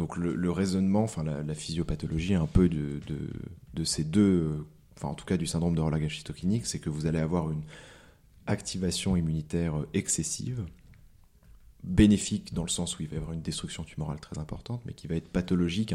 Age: 30-49